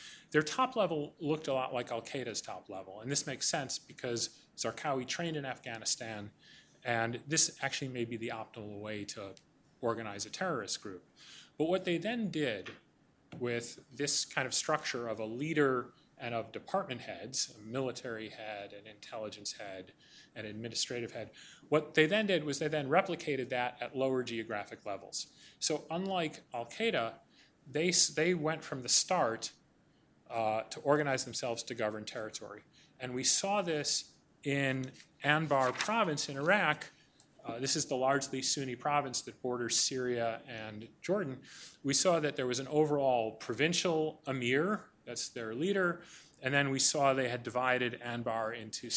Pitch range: 120-150 Hz